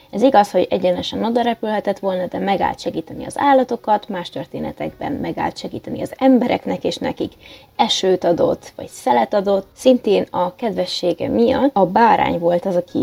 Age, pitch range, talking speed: 20-39, 185-245 Hz, 150 wpm